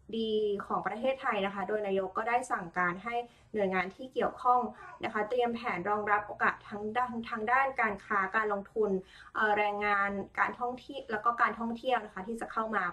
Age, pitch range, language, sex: 20-39, 190-235 Hz, Thai, female